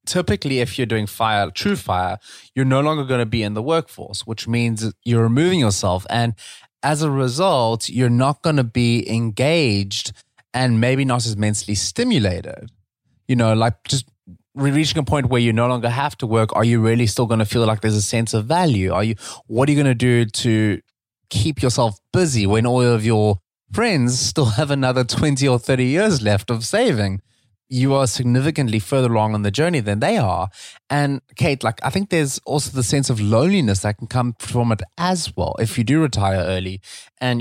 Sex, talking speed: male, 200 wpm